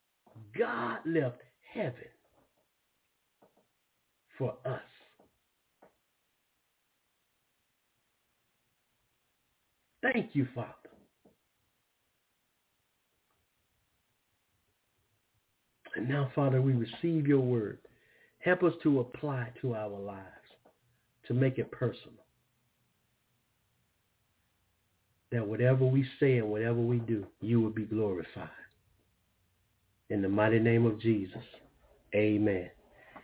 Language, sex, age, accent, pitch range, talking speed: English, male, 60-79, American, 110-155 Hz, 80 wpm